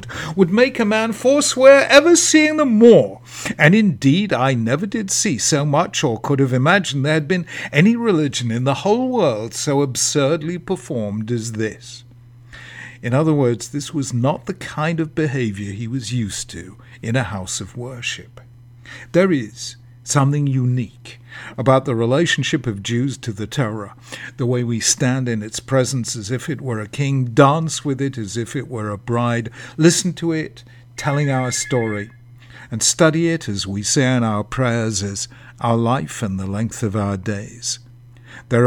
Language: English